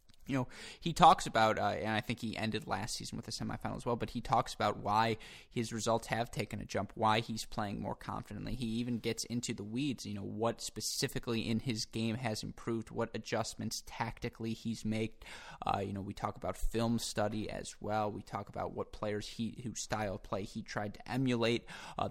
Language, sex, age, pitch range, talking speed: English, male, 20-39, 110-120 Hz, 215 wpm